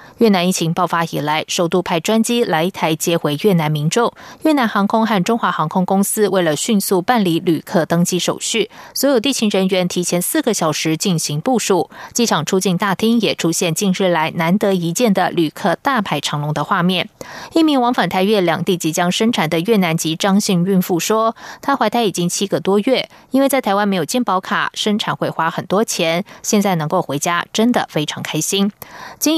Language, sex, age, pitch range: German, female, 20-39, 170-225 Hz